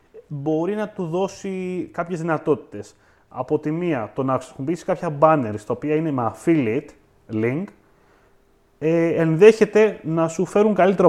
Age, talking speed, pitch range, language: 30-49, 135 wpm, 120-165 Hz, Greek